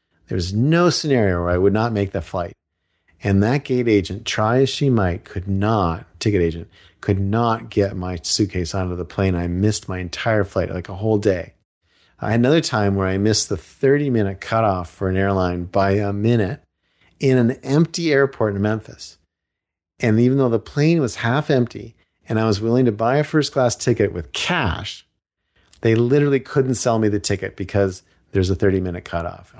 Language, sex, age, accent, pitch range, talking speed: English, male, 50-69, American, 90-120 Hz, 195 wpm